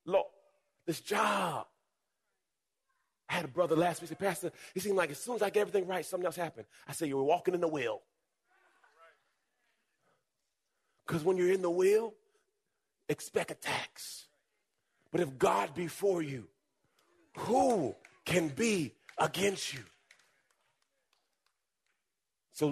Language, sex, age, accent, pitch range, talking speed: English, male, 30-49, American, 140-180 Hz, 140 wpm